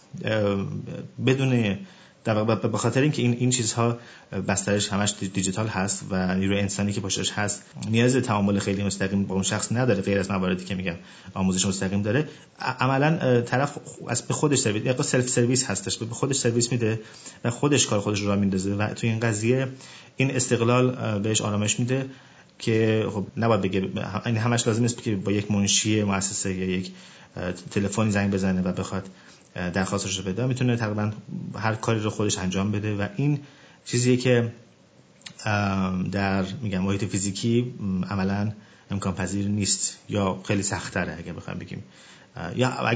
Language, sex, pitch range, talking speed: Persian, male, 100-120 Hz, 155 wpm